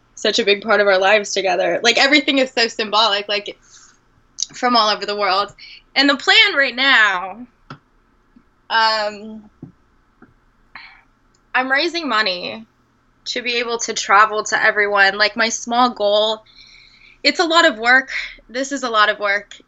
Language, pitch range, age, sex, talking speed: English, 195-235 Hz, 20-39, female, 150 wpm